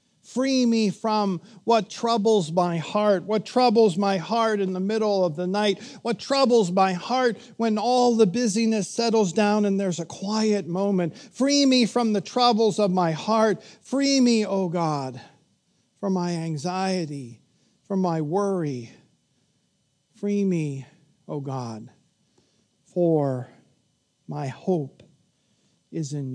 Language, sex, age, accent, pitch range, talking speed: English, male, 50-69, American, 170-220 Hz, 140 wpm